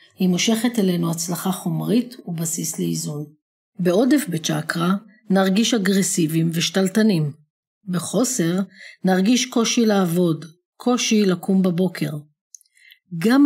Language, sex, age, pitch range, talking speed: Hebrew, female, 40-59, 165-205 Hz, 90 wpm